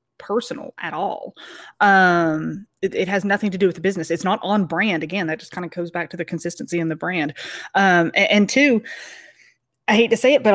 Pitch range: 165-200 Hz